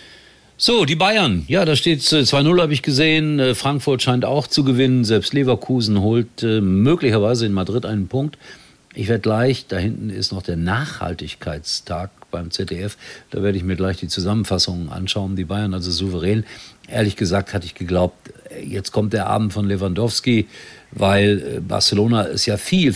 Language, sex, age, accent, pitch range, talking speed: German, male, 50-69, German, 90-115 Hz, 160 wpm